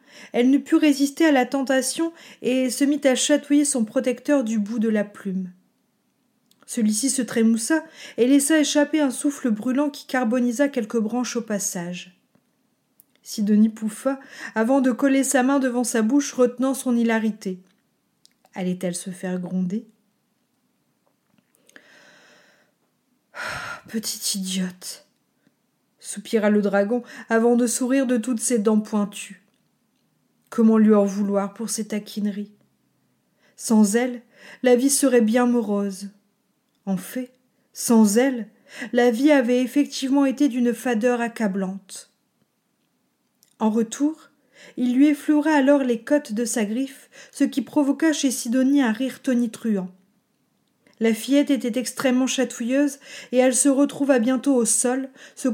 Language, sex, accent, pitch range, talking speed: French, female, French, 220-270 Hz, 130 wpm